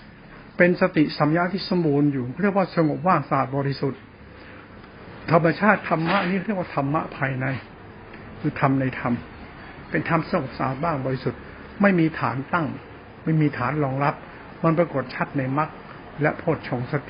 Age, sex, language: 70-89, male, Thai